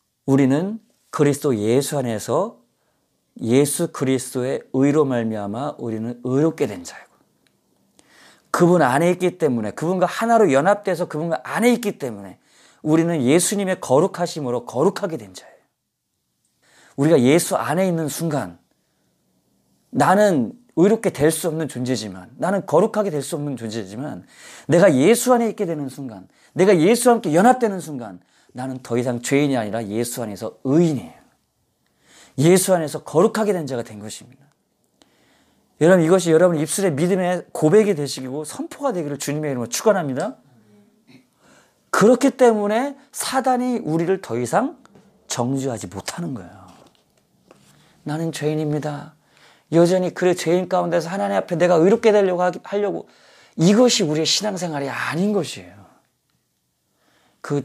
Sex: male